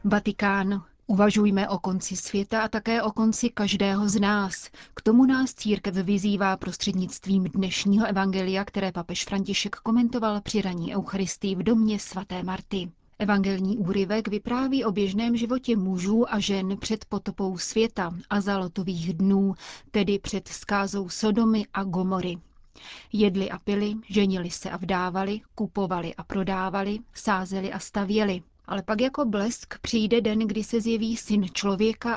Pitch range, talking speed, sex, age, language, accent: 190-215 Hz, 140 wpm, female, 30-49, Czech, native